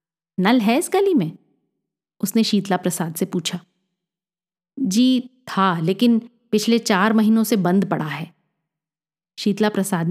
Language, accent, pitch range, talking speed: Hindi, native, 190-245 Hz, 130 wpm